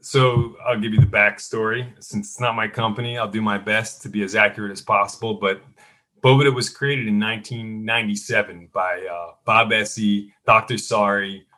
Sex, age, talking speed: male, 30-49, 170 wpm